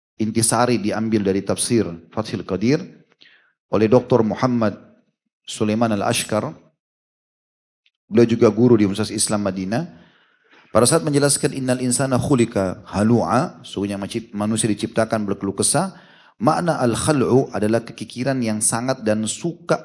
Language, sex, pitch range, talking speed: Indonesian, male, 105-125 Hz, 120 wpm